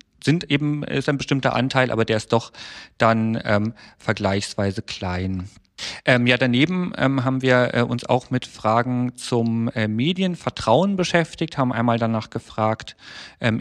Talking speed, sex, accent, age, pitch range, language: 145 wpm, male, German, 40-59, 115-140 Hz, German